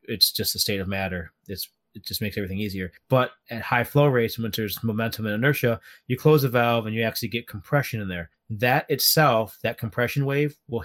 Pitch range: 100-135 Hz